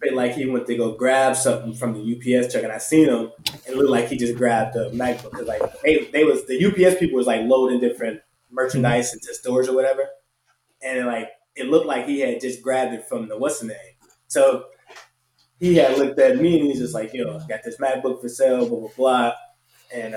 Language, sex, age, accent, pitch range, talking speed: English, male, 20-39, American, 120-155 Hz, 230 wpm